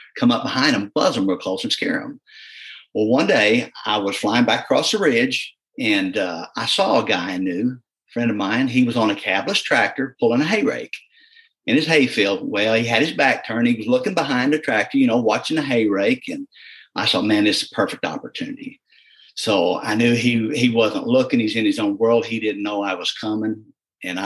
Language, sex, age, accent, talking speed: English, male, 50-69, American, 230 wpm